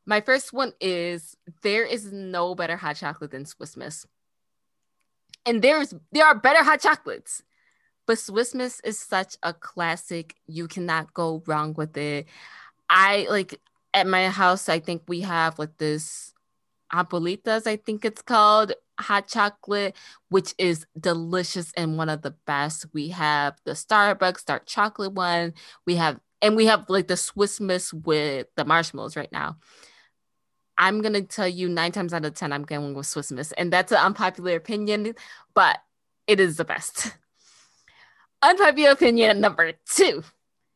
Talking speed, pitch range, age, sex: 155 wpm, 160-210 Hz, 20-39, female